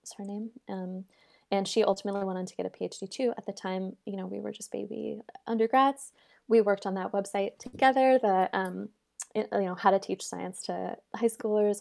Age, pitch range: 20-39, 185-225 Hz